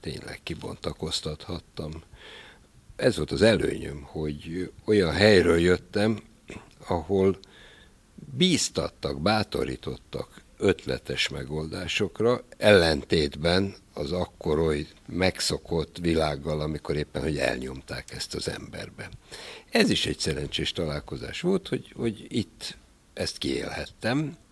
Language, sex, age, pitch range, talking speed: Hungarian, male, 60-79, 80-115 Hz, 95 wpm